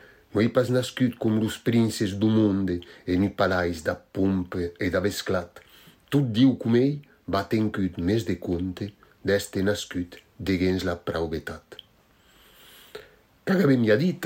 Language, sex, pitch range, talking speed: French, male, 90-120 Hz, 155 wpm